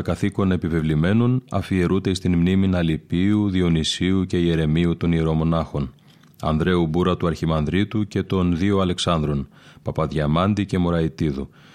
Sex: male